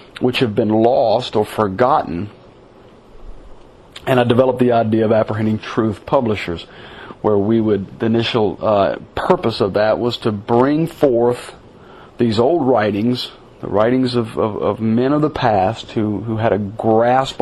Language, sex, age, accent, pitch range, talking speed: English, male, 50-69, American, 110-125 Hz, 155 wpm